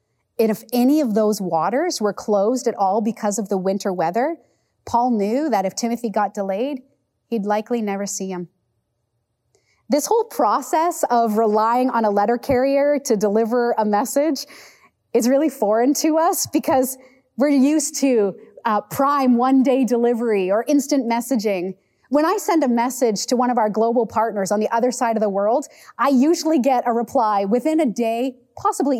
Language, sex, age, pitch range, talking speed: English, female, 30-49, 205-275 Hz, 170 wpm